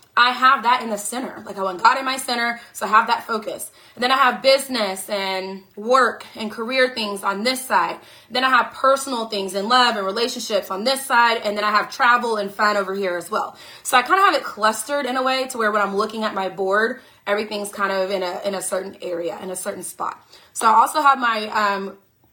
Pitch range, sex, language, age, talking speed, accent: 190-250 Hz, female, English, 20-39, 245 wpm, American